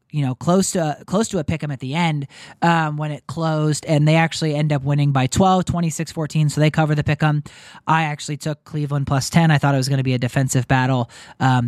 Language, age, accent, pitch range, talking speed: English, 20-39, American, 140-180 Hz, 235 wpm